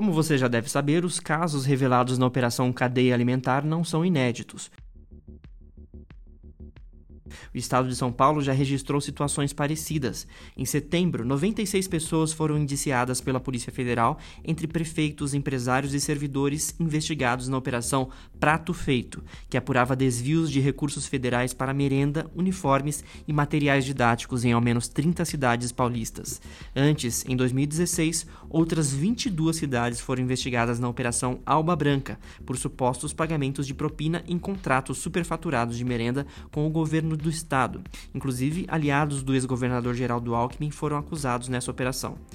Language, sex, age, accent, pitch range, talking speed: Portuguese, male, 20-39, Brazilian, 125-155 Hz, 140 wpm